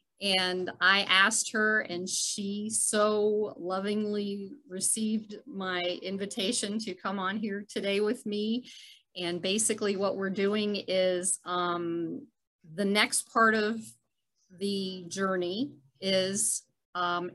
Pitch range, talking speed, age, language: 180-215 Hz, 115 wpm, 40-59, English